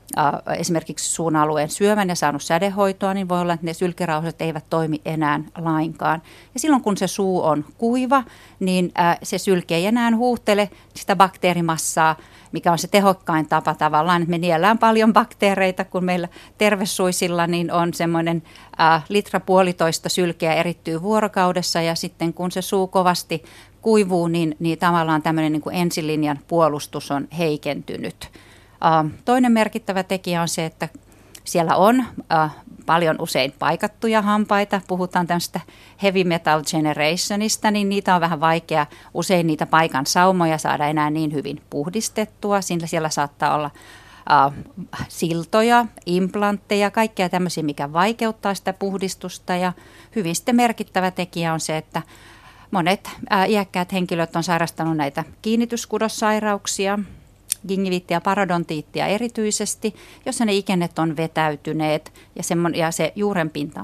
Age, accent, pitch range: 40-59, native, 160-200 Hz